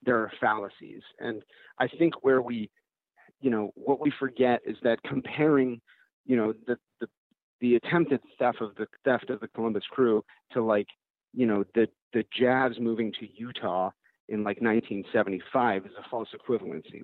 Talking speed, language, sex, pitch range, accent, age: 165 wpm, English, male, 110-130 Hz, American, 30-49